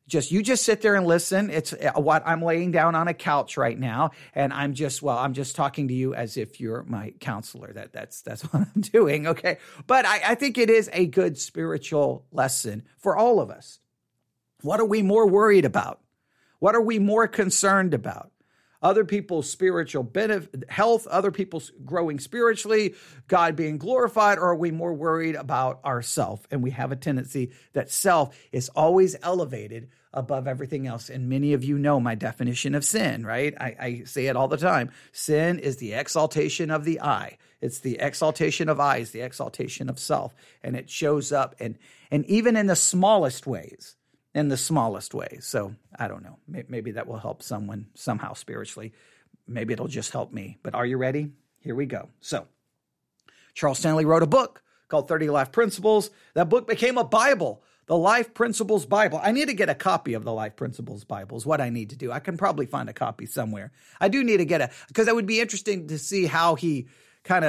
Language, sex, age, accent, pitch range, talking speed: English, male, 50-69, American, 135-195 Hz, 200 wpm